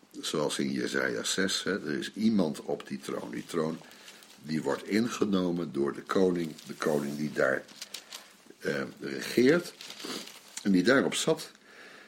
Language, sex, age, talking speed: Dutch, male, 60-79, 145 wpm